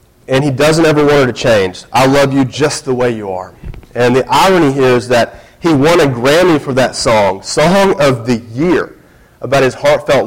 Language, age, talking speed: English, 30-49, 210 wpm